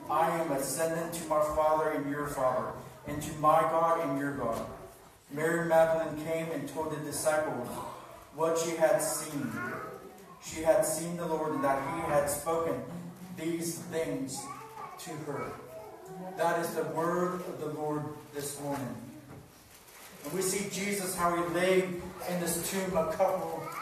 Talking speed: 155 wpm